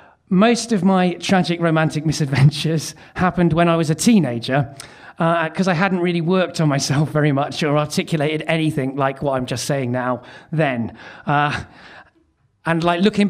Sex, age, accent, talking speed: male, 40-59, British, 160 wpm